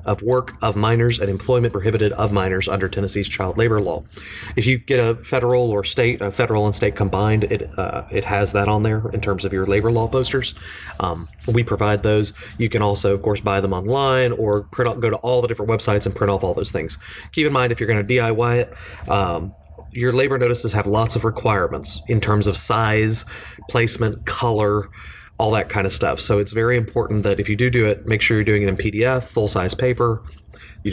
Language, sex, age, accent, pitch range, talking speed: English, male, 30-49, American, 100-115 Hz, 220 wpm